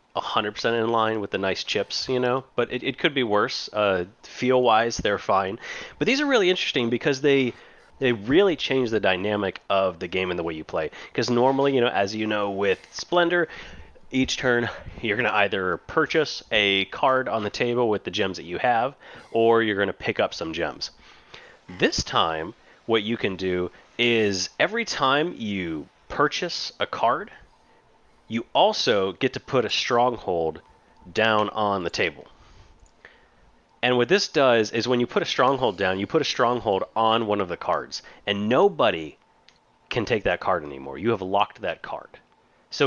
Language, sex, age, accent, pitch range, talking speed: English, male, 30-49, American, 100-130 Hz, 180 wpm